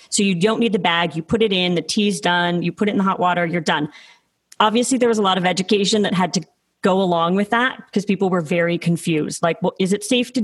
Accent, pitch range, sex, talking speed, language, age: American, 175-220 Hz, female, 270 wpm, English, 30-49